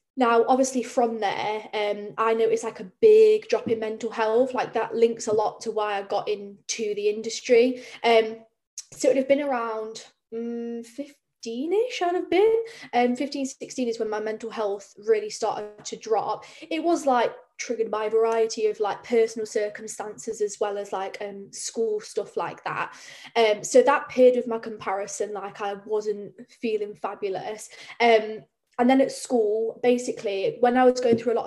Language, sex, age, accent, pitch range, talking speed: English, female, 10-29, British, 215-250 Hz, 180 wpm